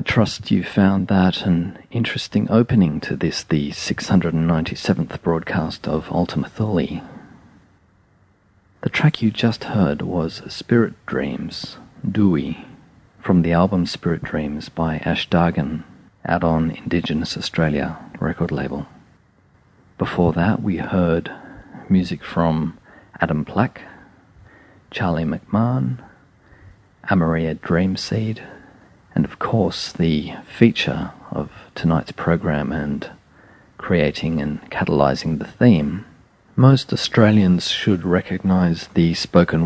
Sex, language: male, English